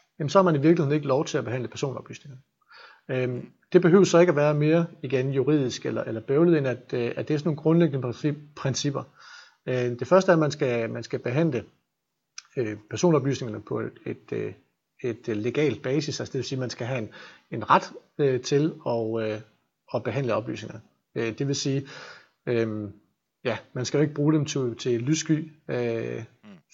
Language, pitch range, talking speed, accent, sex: Danish, 125-160 Hz, 195 wpm, native, male